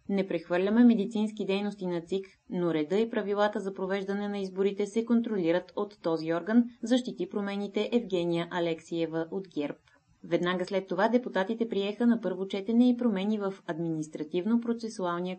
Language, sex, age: Bulgarian, female, 20-39